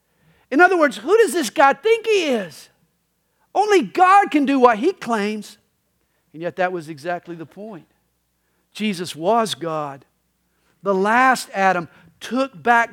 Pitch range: 200-290 Hz